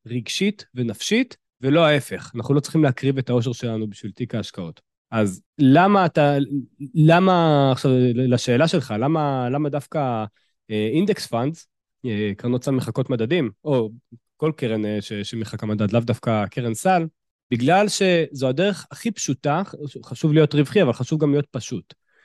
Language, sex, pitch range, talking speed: Hebrew, male, 120-160 Hz, 140 wpm